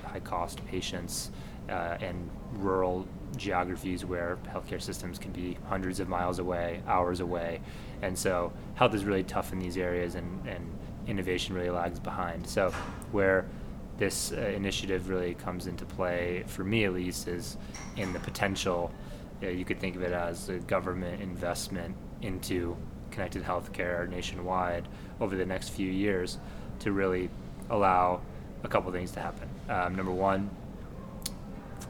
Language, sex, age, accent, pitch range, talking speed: English, male, 20-39, American, 90-95 Hz, 155 wpm